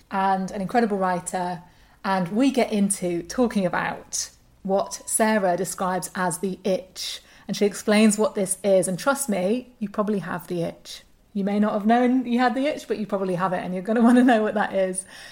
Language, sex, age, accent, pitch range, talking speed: English, female, 30-49, British, 190-230 Hz, 210 wpm